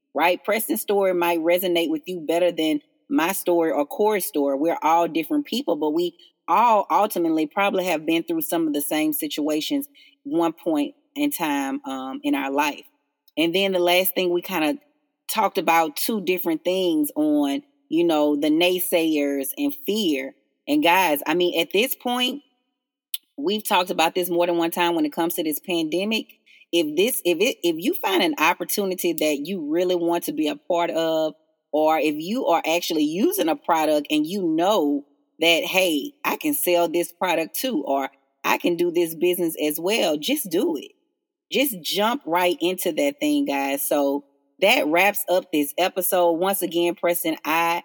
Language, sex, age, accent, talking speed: English, female, 30-49, American, 185 wpm